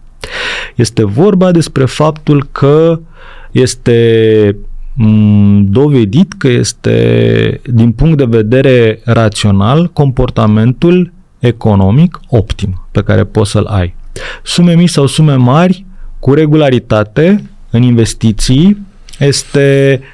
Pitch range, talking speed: 110-140 Hz, 95 wpm